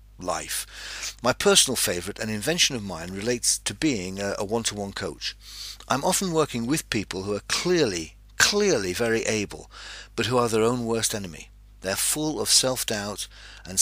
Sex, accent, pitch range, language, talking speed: male, British, 100-125 Hz, English, 165 wpm